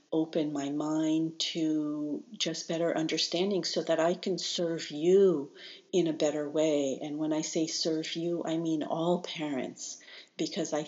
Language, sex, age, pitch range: English, female, 50-69, 145-165 Hz